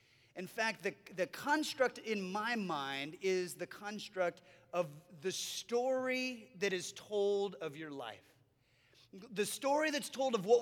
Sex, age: male, 30-49